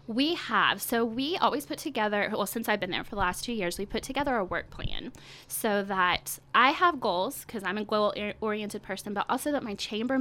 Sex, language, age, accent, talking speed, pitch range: female, English, 20-39, American, 235 wpm, 190-230 Hz